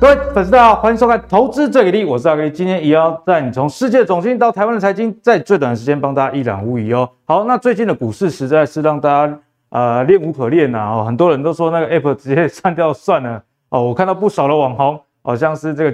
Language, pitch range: Chinese, 125-185 Hz